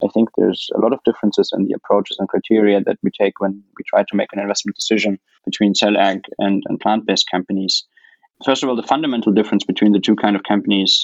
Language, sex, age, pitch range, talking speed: English, male, 20-39, 100-110 Hz, 230 wpm